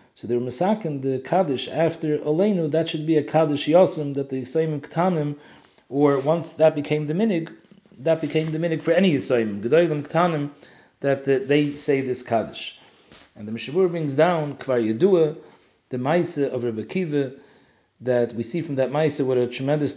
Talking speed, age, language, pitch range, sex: 170 wpm, 40-59, English, 125-160 Hz, male